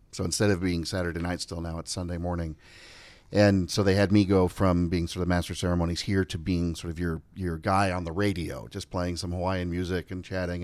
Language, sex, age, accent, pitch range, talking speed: English, male, 40-59, American, 90-105 Hz, 230 wpm